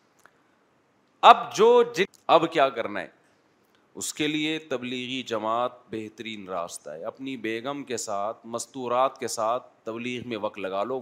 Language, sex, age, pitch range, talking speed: Urdu, male, 40-59, 115-150 Hz, 145 wpm